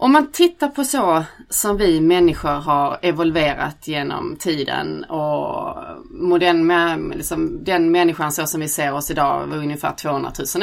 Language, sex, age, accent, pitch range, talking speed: English, female, 30-49, Swedish, 160-200 Hz, 140 wpm